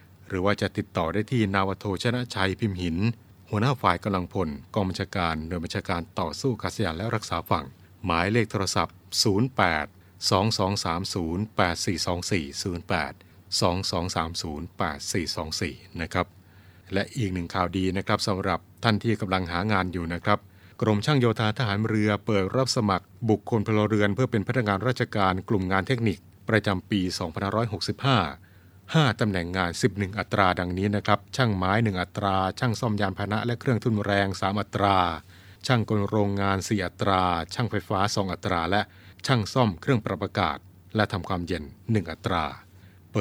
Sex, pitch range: male, 90-110 Hz